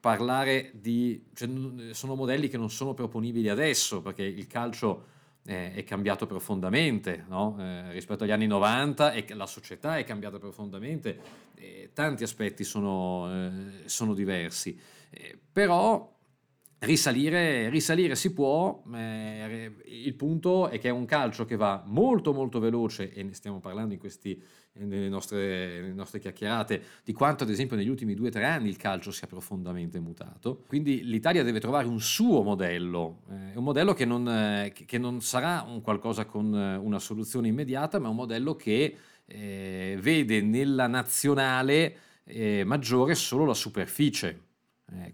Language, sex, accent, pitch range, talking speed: Italian, male, native, 95-130 Hz, 155 wpm